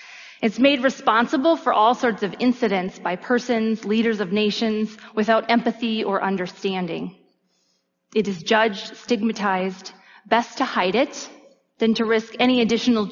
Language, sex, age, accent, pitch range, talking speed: English, female, 30-49, American, 195-240 Hz, 135 wpm